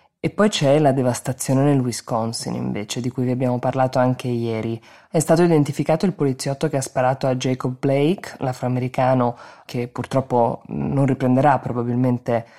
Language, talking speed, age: Italian, 155 wpm, 20-39